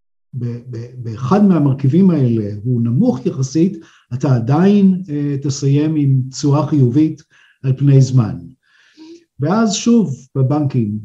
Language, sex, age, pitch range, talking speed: Hebrew, male, 50-69, 130-170 Hz, 105 wpm